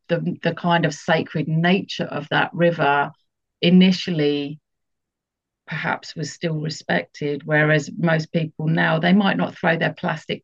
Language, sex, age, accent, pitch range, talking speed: English, female, 40-59, British, 155-185 Hz, 140 wpm